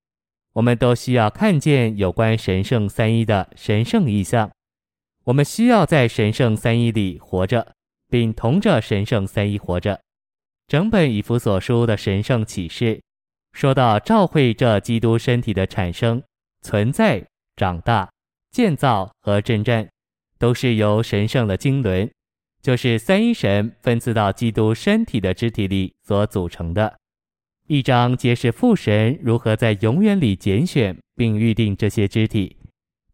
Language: Chinese